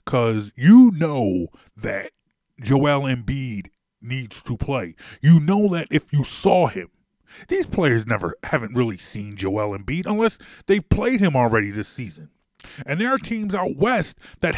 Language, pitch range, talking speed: English, 130-180 Hz, 155 wpm